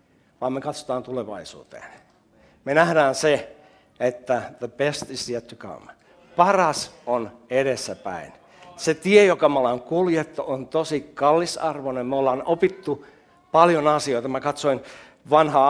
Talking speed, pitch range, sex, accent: 130 wpm, 130-200 Hz, male, native